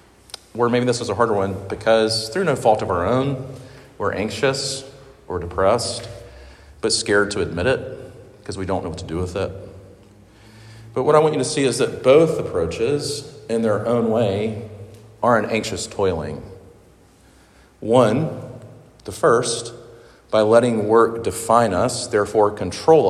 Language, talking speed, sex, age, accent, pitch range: English, 160 wpm, male, 40-59, American, 90-115 Hz